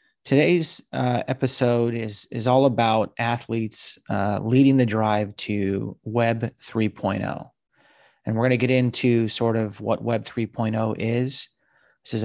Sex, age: male, 30-49